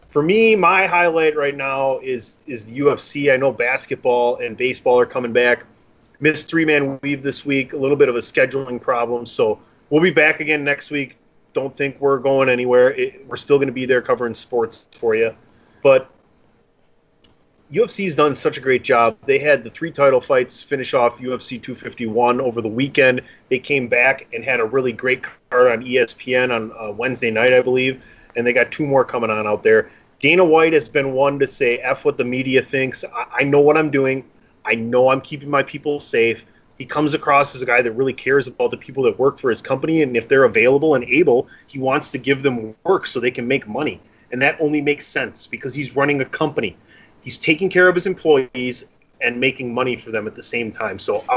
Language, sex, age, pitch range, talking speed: English, male, 30-49, 125-155 Hz, 215 wpm